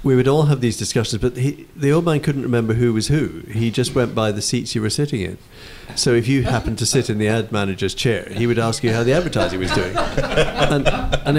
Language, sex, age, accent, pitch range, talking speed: English, male, 50-69, British, 105-135 Hz, 250 wpm